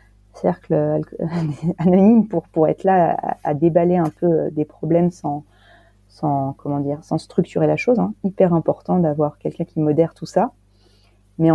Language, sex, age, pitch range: French, female, 30-49, 150-175 Hz